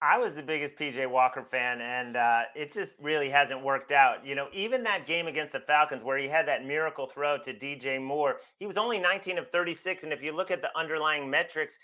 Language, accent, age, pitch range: English, American, 30-49, 140-175 Hz